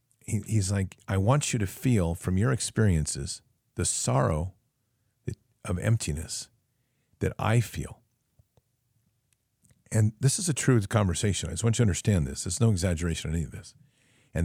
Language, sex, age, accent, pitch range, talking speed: English, male, 50-69, American, 85-120 Hz, 160 wpm